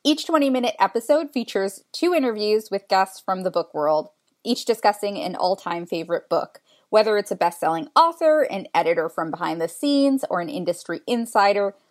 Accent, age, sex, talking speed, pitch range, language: American, 20-39, female, 165 wpm, 175-255 Hz, English